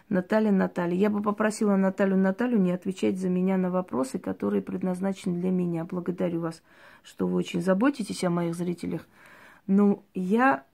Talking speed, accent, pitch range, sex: 155 wpm, native, 170-200 Hz, female